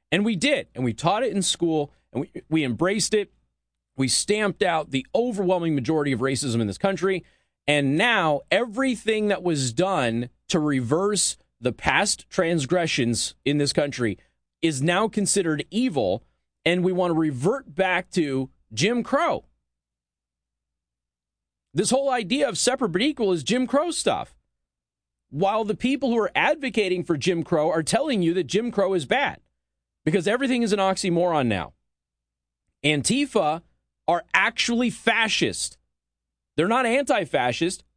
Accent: American